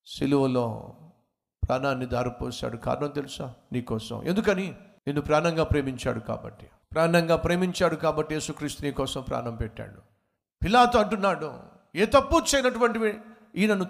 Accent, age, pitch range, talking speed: native, 50-69, 125-180 Hz, 105 wpm